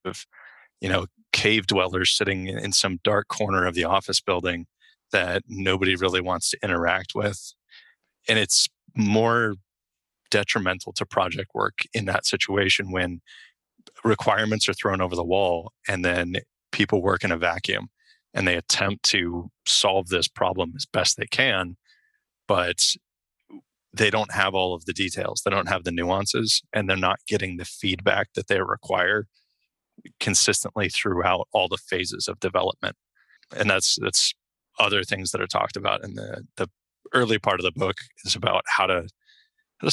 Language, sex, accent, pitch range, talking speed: English, male, American, 90-105 Hz, 160 wpm